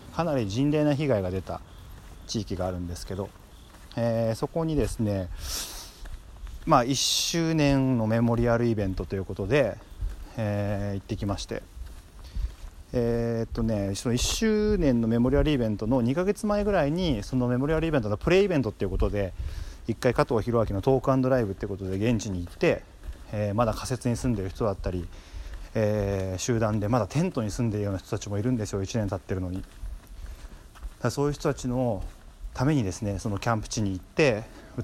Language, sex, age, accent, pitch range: Japanese, male, 40-59, native, 95-125 Hz